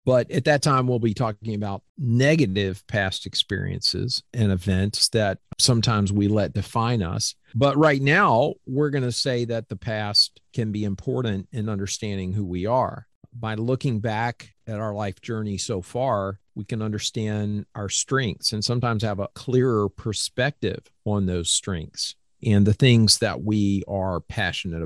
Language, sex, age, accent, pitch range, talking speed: English, male, 50-69, American, 100-120 Hz, 160 wpm